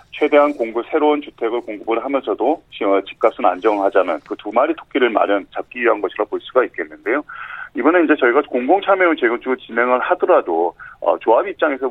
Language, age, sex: Korean, 40-59, male